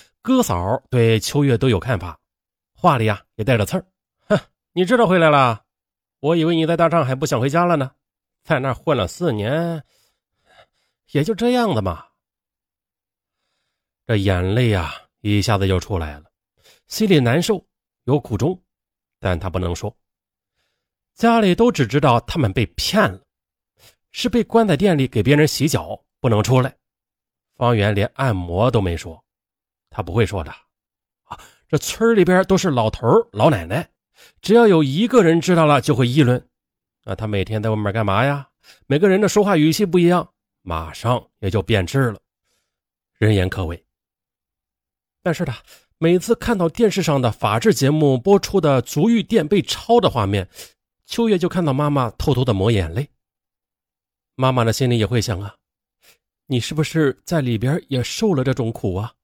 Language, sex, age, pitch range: Chinese, male, 30-49, 105-170 Hz